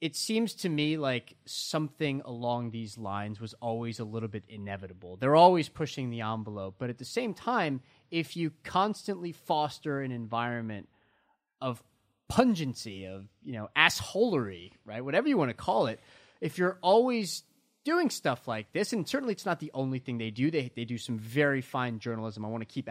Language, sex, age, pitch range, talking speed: English, male, 30-49, 120-170 Hz, 185 wpm